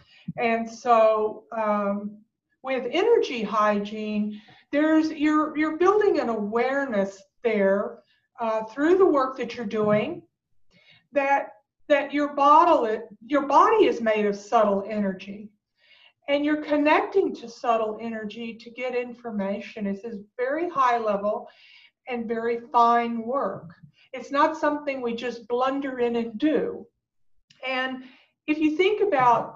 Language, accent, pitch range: English, American, 215-275 Hz